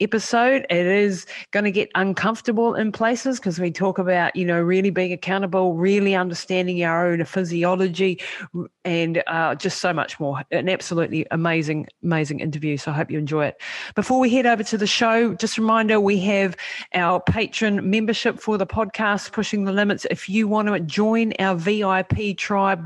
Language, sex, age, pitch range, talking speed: English, female, 40-59, 175-210 Hz, 180 wpm